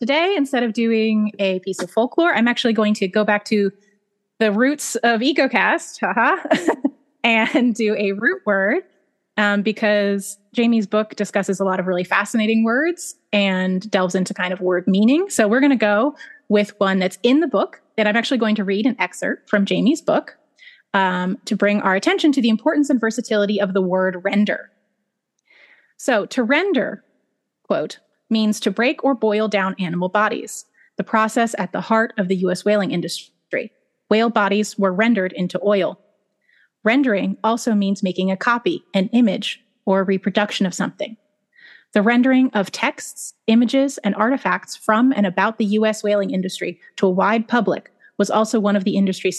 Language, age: English, 30-49